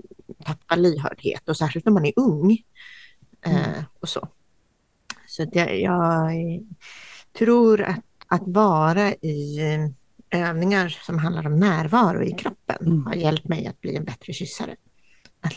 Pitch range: 150-195 Hz